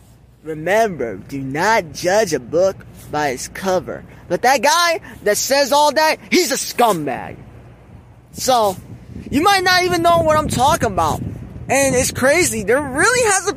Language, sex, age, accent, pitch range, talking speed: English, male, 20-39, American, 200-320 Hz, 155 wpm